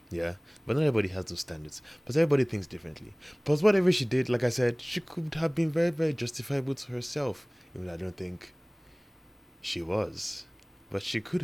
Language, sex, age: English, male, 20-39